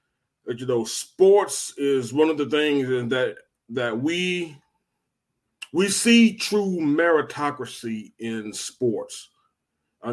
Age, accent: 30-49, American